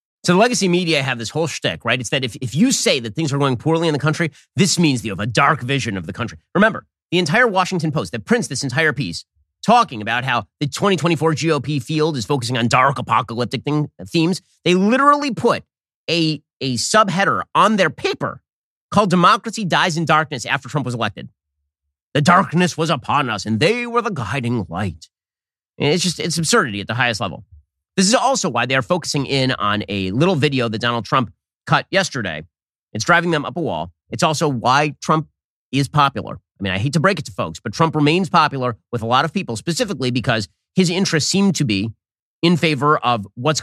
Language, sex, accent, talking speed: English, male, American, 210 wpm